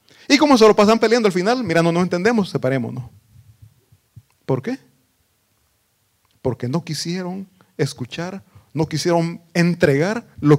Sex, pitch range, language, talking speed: male, 115-170 Hz, Italian, 130 wpm